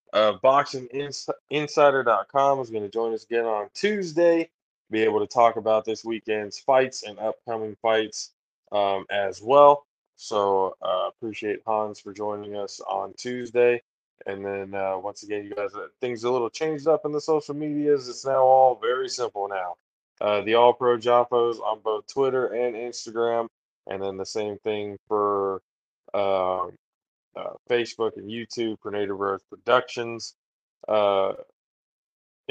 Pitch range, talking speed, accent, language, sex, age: 105-130 Hz, 150 wpm, American, English, male, 20-39